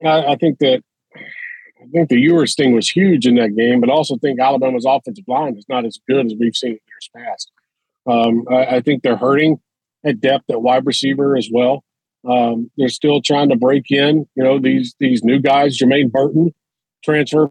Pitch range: 130-180 Hz